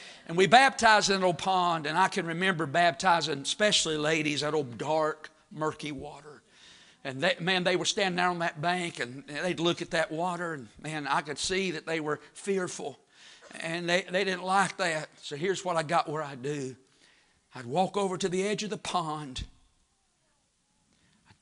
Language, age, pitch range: English, 50-69, 145-185 Hz